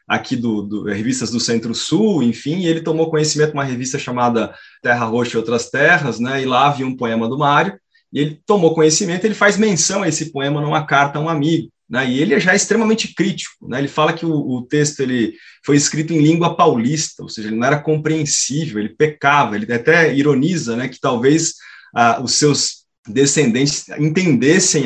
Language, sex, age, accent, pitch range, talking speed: Portuguese, male, 20-39, Brazilian, 120-160 Hz, 200 wpm